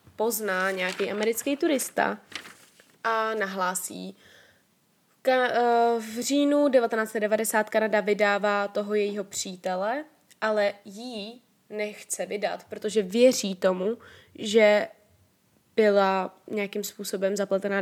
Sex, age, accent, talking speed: female, 20-39, native, 90 wpm